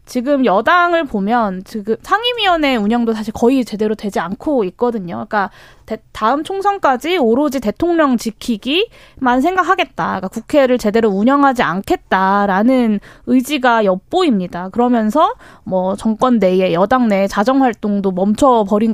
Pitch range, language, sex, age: 210-275 Hz, Korean, female, 20-39